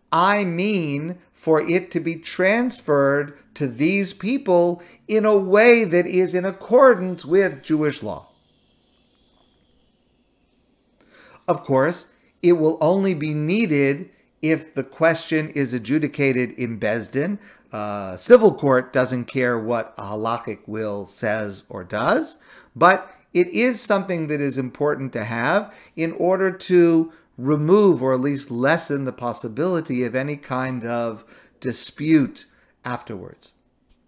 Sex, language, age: male, English, 50-69